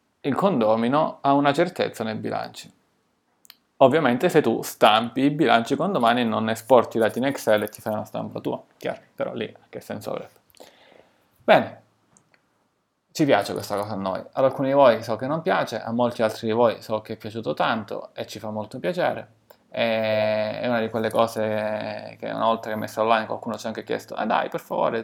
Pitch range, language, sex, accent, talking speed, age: 110-145 Hz, Italian, male, native, 200 wpm, 30-49